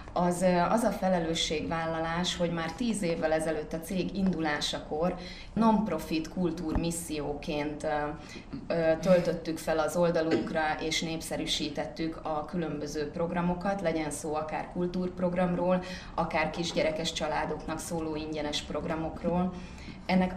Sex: female